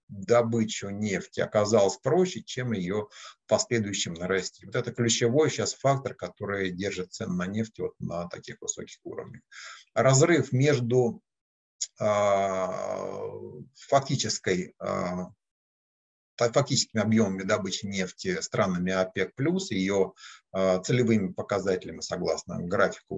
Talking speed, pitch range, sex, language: 100 wpm, 95-120 Hz, male, Turkish